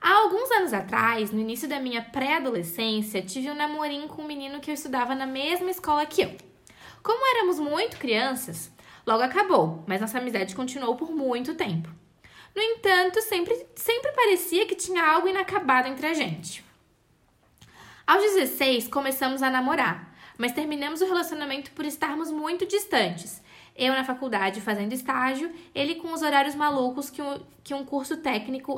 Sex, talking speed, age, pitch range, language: female, 160 wpm, 10-29, 255-350 Hz, Portuguese